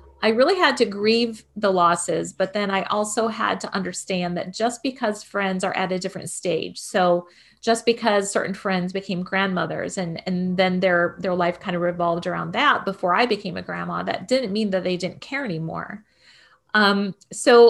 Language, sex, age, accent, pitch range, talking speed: English, female, 30-49, American, 180-225 Hz, 190 wpm